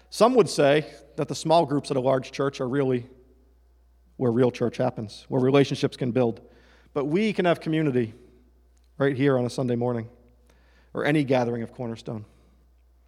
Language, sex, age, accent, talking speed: English, male, 40-59, American, 170 wpm